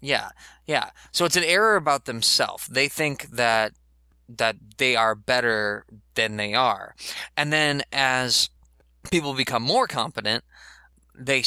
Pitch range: 105-135 Hz